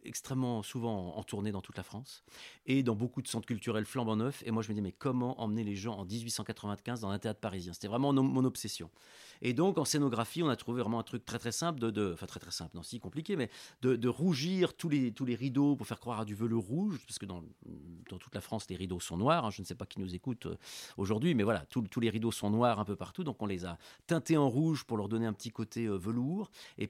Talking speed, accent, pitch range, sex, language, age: 275 wpm, French, 105-135 Hz, male, French, 40-59